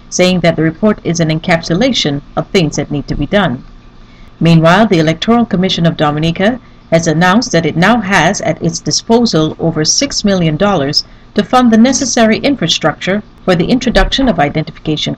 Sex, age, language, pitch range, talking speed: female, 40-59, English, 155-215 Hz, 170 wpm